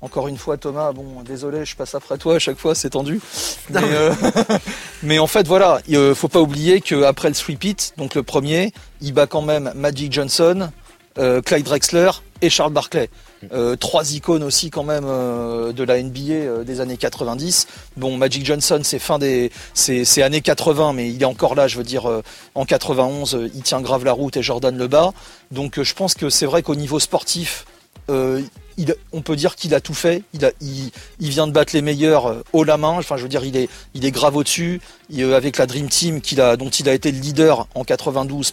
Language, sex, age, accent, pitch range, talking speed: French, male, 40-59, French, 130-155 Hz, 225 wpm